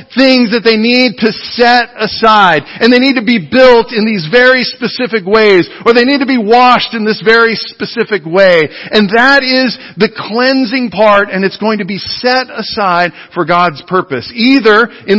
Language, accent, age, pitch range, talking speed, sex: English, American, 50-69, 155-225 Hz, 185 wpm, male